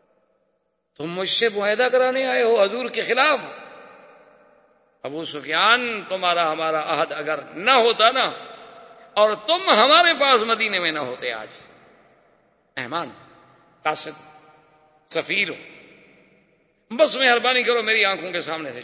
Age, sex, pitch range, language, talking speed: 50-69, male, 170-250 Hz, Urdu, 125 wpm